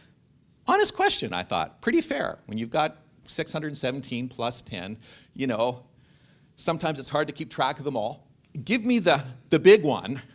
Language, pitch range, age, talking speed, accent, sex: English, 125-175 Hz, 50-69, 170 wpm, American, male